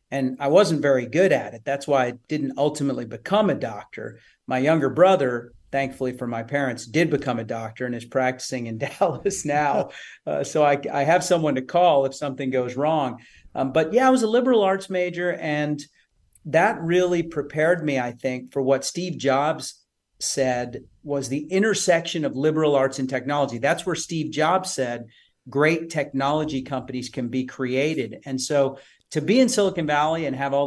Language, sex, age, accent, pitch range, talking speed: English, male, 40-59, American, 130-165 Hz, 185 wpm